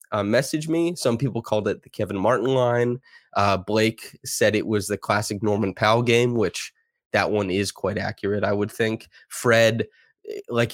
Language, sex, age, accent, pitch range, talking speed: English, male, 20-39, American, 100-115 Hz, 180 wpm